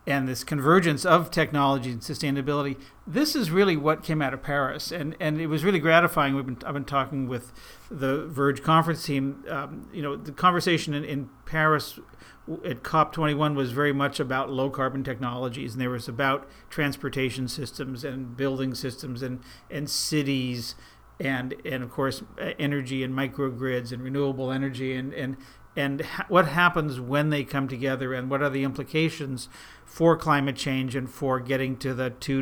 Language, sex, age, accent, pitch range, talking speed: English, male, 50-69, American, 130-150 Hz, 175 wpm